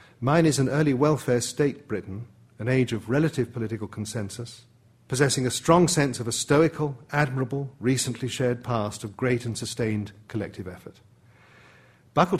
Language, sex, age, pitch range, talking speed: English, male, 50-69, 105-130 Hz, 150 wpm